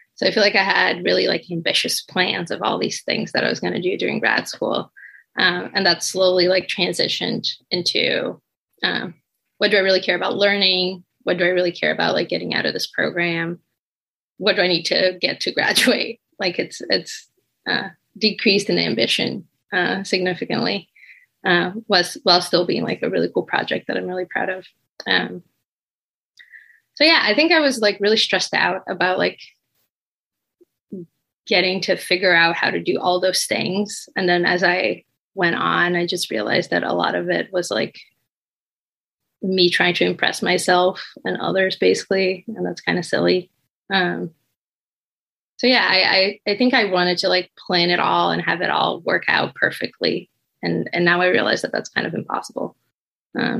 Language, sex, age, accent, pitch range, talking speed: English, female, 20-39, American, 175-205 Hz, 185 wpm